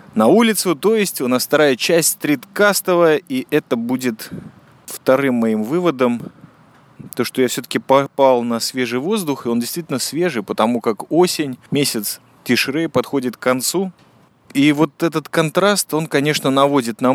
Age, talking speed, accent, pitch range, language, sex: 20-39, 150 wpm, native, 125-165 Hz, Russian, male